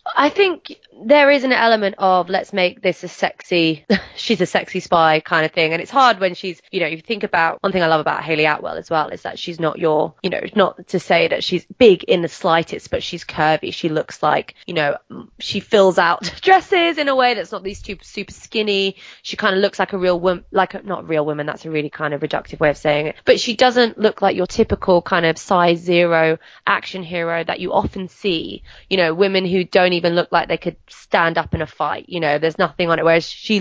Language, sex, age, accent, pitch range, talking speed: English, female, 20-39, British, 165-200 Hz, 245 wpm